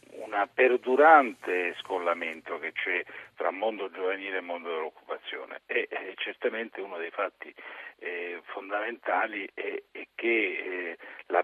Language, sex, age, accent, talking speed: Italian, male, 50-69, native, 125 wpm